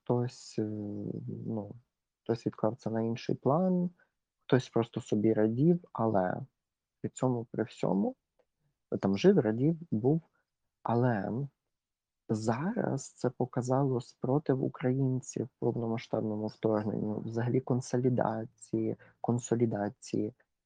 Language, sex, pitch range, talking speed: Ukrainian, male, 105-125 Hz, 95 wpm